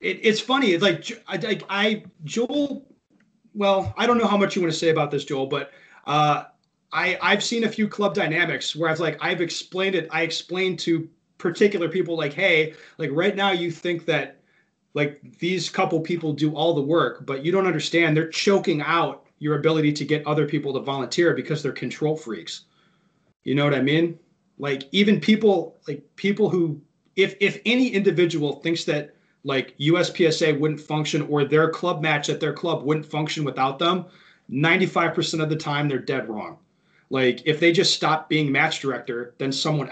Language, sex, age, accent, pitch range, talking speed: English, male, 30-49, American, 145-180 Hz, 190 wpm